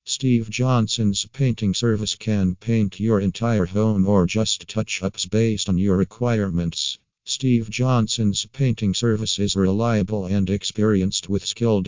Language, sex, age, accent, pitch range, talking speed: English, male, 50-69, American, 95-110 Hz, 130 wpm